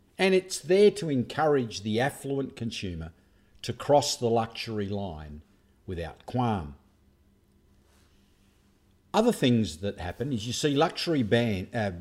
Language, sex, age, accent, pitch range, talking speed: English, male, 50-69, Australian, 100-135 Hz, 120 wpm